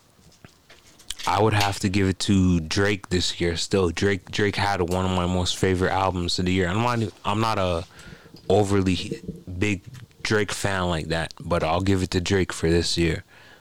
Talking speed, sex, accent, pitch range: 190 wpm, male, American, 90-105 Hz